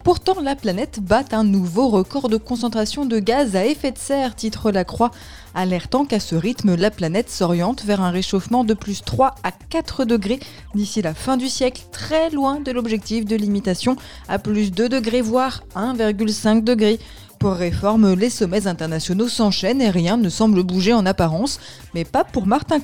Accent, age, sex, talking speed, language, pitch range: French, 20-39, female, 185 wpm, French, 195-250 Hz